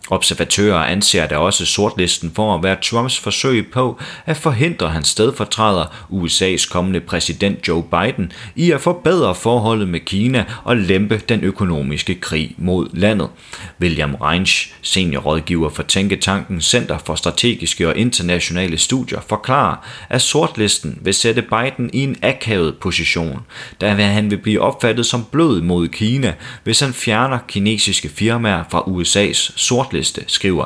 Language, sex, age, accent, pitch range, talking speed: Danish, male, 30-49, native, 85-120 Hz, 140 wpm